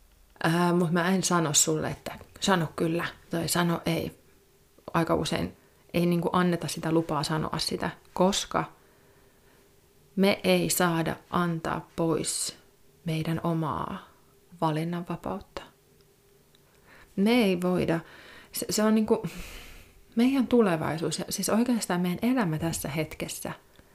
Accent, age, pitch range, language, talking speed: native, 30-49, 160-190 Hz, Finnish, 115 wpm